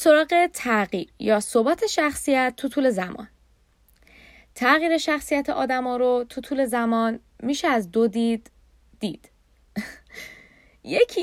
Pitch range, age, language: 210-305 Hz, 10-29, Persian